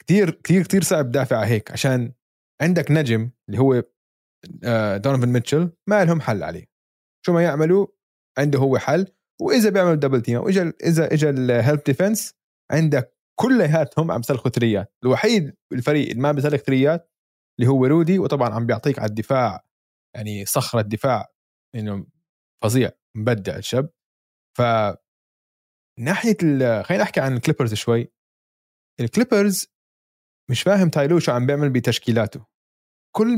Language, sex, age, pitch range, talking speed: Arabic, male, 20-39, 115-160 Hz, 135 wpm